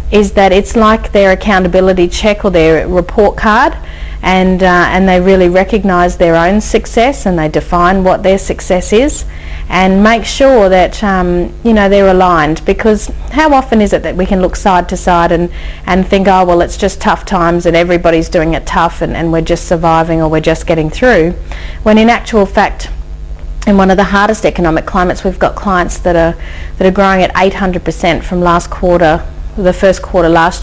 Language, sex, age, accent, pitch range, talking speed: English, female, 40-59, Australian, 170-195 Hz, 195 wpm